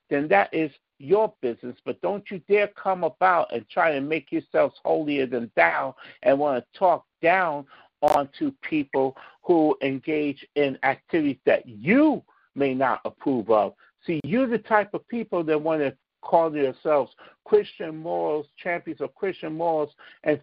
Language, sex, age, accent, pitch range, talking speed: English, male, 50-69, American, 140-195 Hz, 160 wpm